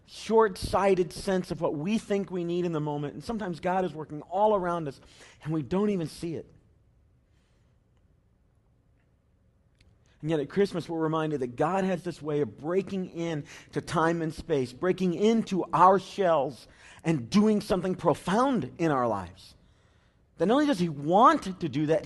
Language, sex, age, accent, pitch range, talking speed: English, male, 40-59, American, 160-220 Hz, 170 wpm